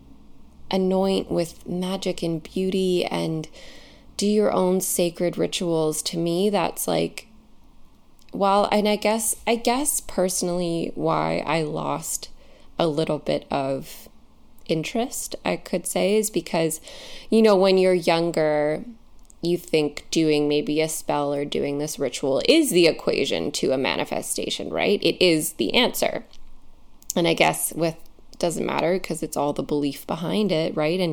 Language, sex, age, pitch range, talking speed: English, female, 20-39, 150-190 Hz, 145 wpm